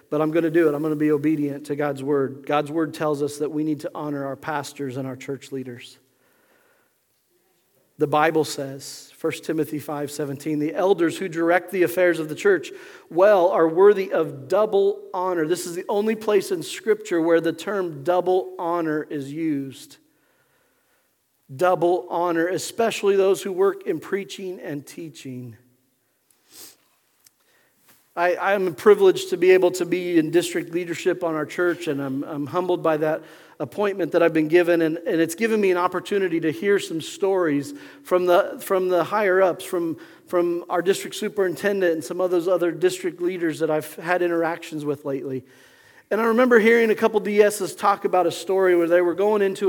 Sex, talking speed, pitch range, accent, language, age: male, 180 wpm, 155-195 Hz, American, English, 40-59